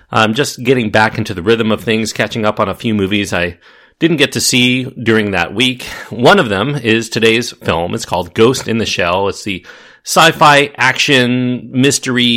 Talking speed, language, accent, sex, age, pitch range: 195 wpm, English, American, male, 40-59, 100-125 Hz